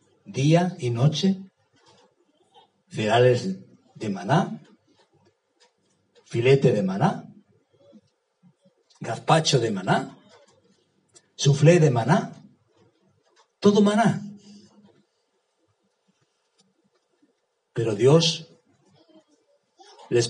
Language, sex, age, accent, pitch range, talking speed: Spanish, male, 60-79, Spanish, 130-175 Hz, 60 wpm